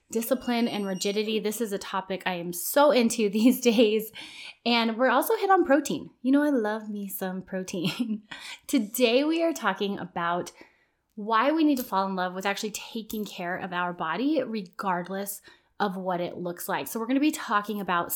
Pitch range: 190-260 Hz